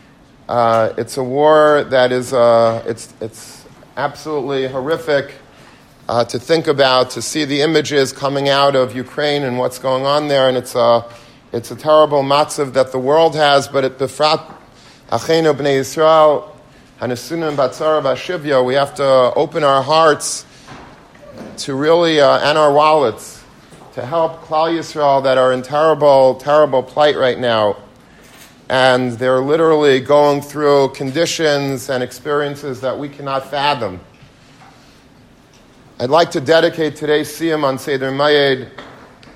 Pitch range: 130-150 Hz